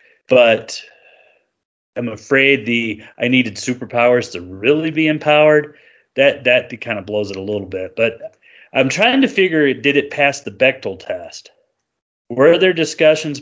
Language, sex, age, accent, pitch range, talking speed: English, male, 30-49, American, 105-135 Hz, 150 wpm